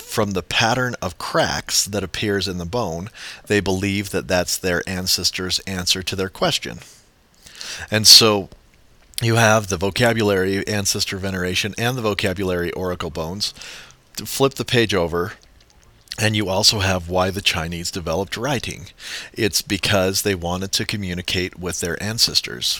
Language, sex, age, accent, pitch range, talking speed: English, male, 40-59, American, 90-110 Hz, 145 wpm